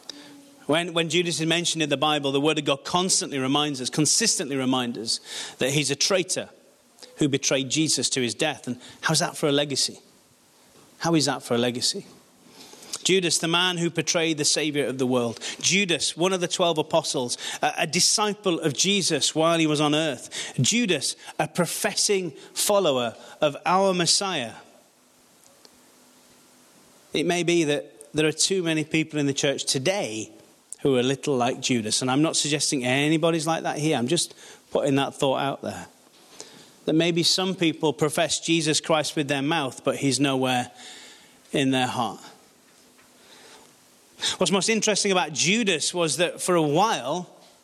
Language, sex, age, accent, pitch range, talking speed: English, male, 30-49, British, 140-175 Hz, 165 wpm